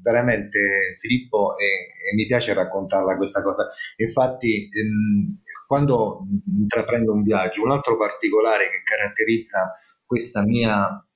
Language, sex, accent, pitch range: Italian, male, native, 110-155 Hz